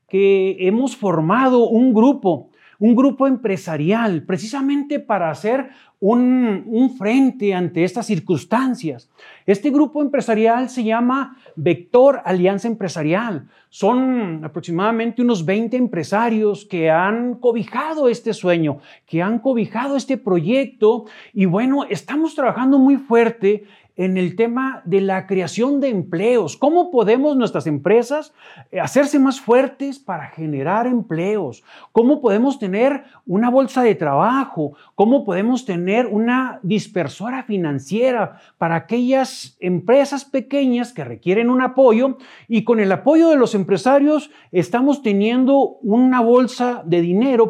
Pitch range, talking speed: 185-255 Hz, 125 wpm